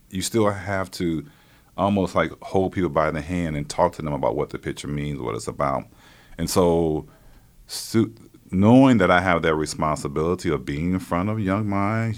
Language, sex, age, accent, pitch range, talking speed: English, male, 40-59, American, 75-95 Hz, 190 wpm